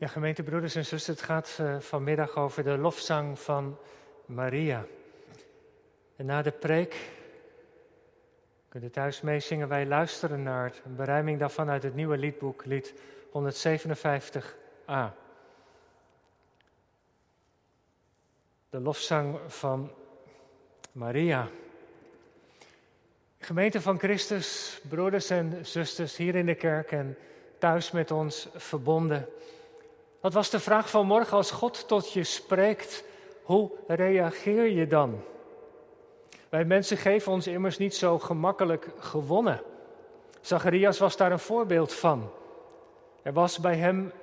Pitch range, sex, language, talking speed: 155-210 Hz, male, Dutch, 115 wpm